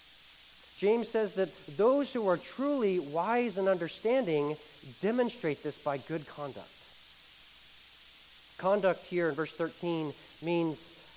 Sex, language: male, English